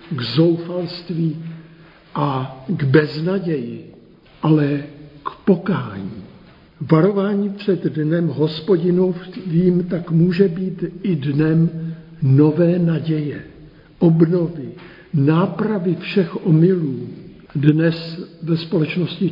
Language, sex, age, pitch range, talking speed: Czech, male, 60-79, 160-185 Hz, 80 wpm